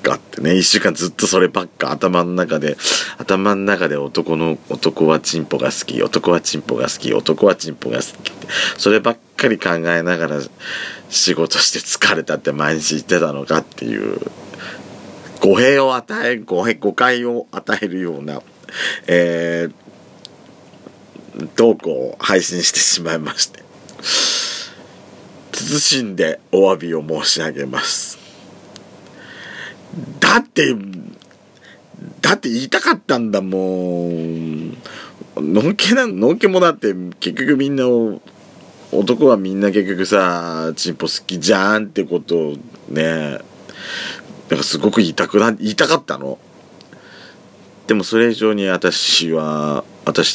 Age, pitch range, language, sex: 40-59, 80-105 Hz, Japanese, male